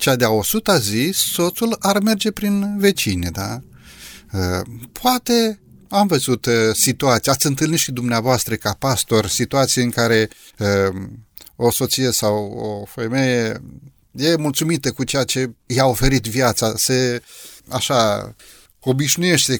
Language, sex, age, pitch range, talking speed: Romanian, male, 30-49, 110-145 Hz, 120 wpm